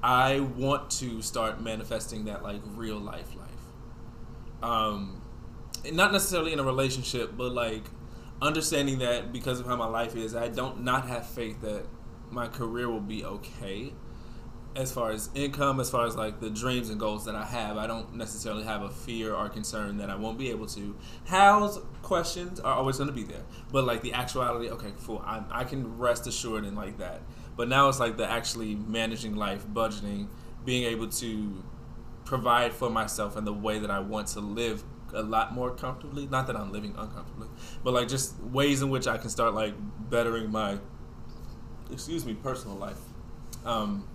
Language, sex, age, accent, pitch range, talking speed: English, male, 20-39, American, 110-130 Hz, 185 wpm